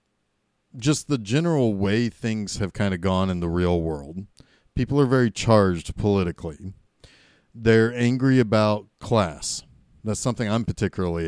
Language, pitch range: English, 90-115 Hz